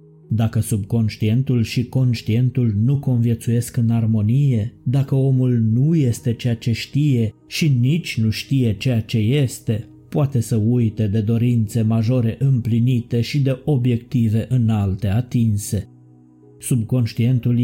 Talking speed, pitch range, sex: 120 wpm, 110-130 Hz, male